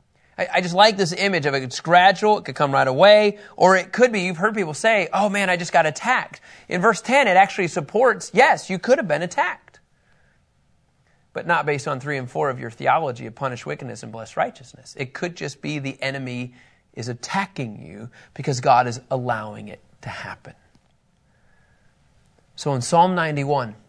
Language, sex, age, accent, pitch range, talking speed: English, male, 30-49, American, 135-190 Hz, 190 wpm